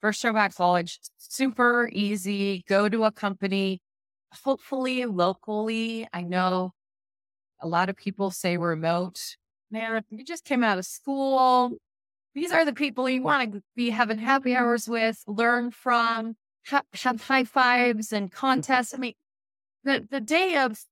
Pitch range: 165-235 Hz